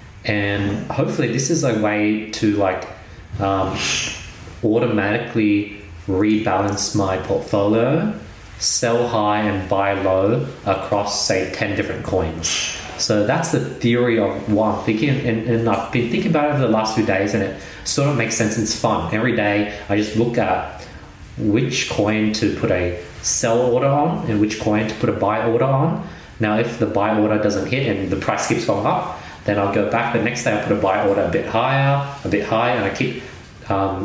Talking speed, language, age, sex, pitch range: 190 wpm, English, 20-39, male, 100-120 Hz